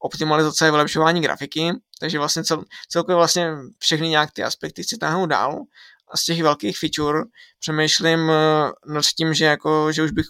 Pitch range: 150-160 Hz